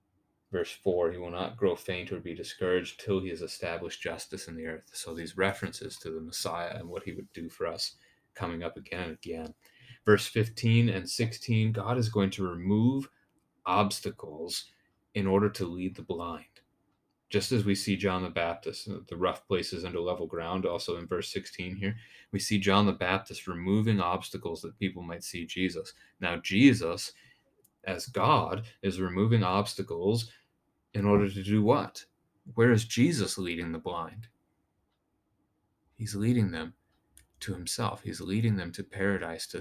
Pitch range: 90-105 Hz